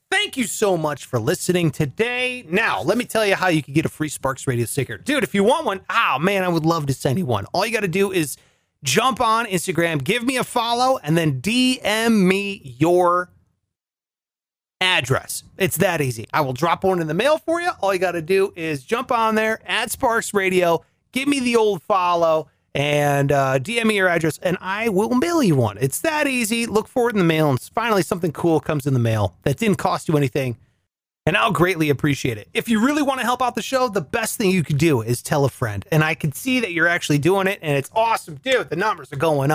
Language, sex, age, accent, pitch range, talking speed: English, male, 30-49, American, 145-225 Hz, 240 wpm